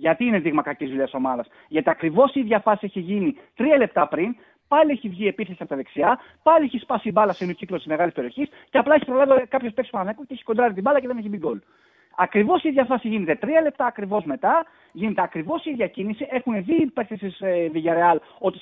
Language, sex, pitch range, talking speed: Greek, male, 180-280 Hz, 205 wpm